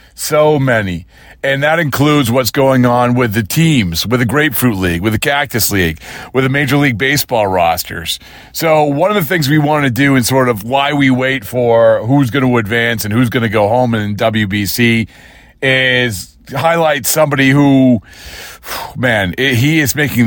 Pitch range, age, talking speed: 110-140 Hz, 40-59, 180 wpm